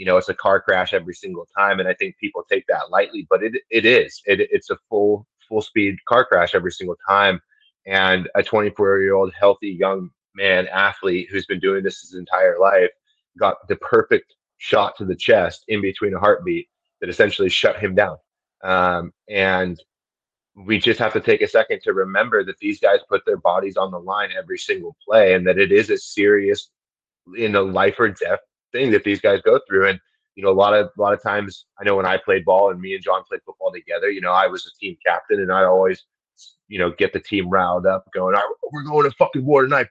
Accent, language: American, English